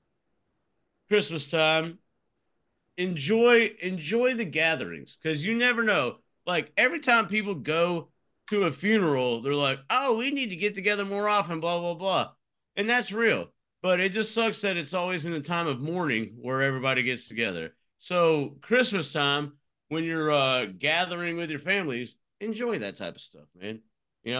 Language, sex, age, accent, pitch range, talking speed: English, male, 40-59, American, 135-175 Hz, 165 wpm